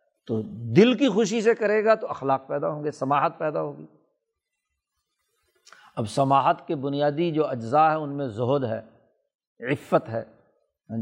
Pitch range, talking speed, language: 140-180 Hz, 160 wpm, Urdu